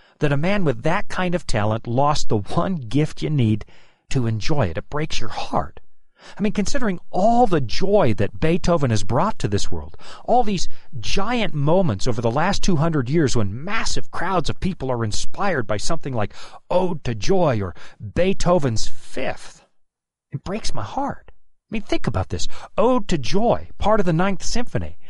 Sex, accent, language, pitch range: male, American, English, 115-185 Hz